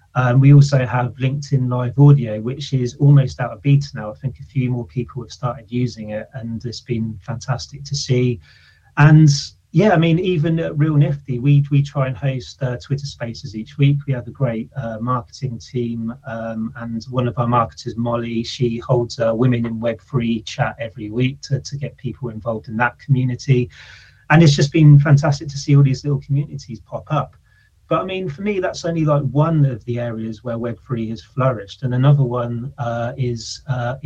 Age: 30-49